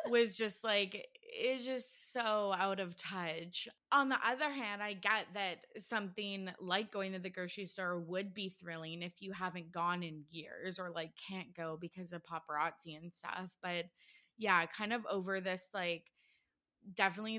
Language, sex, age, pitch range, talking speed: English, female, 20-39, 175-210 Hz, 170 wpm